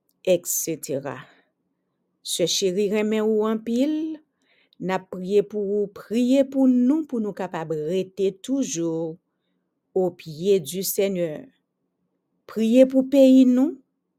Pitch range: 170-215 Hz